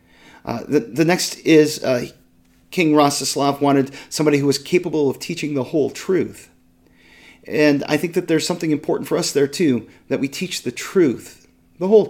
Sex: male